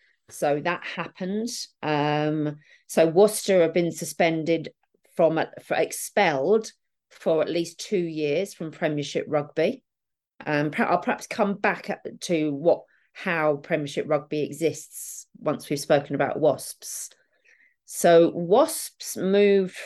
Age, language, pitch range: 40-59, English, 150-190 Hz